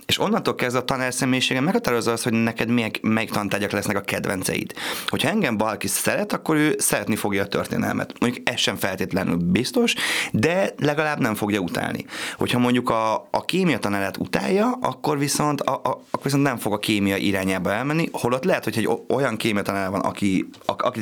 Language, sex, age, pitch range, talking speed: Hungarian, male, 30-49, 100-125 Hz, 180 wpm